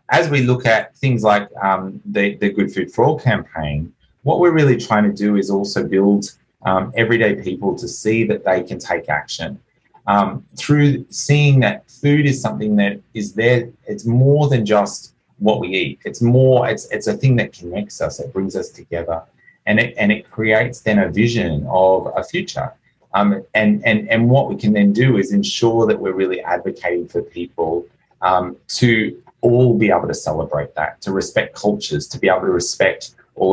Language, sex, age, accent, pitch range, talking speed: English, male, 30-49, Australian, 100-125 Hz, 195 wpm